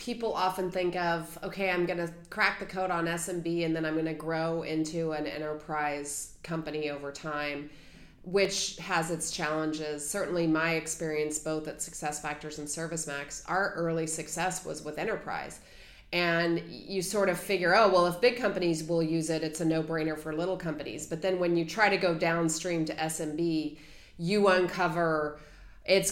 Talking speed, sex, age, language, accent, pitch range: 170 wpm, female, 30-49, English, American, 155-180 Hz